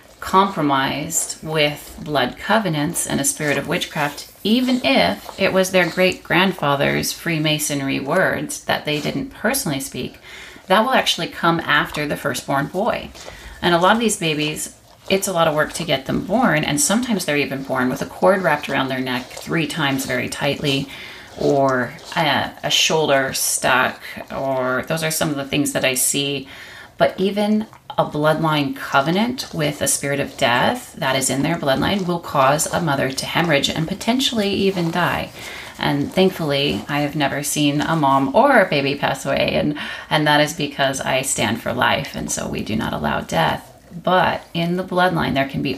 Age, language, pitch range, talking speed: 30-49, English, 135-175 Hz, 180 wpm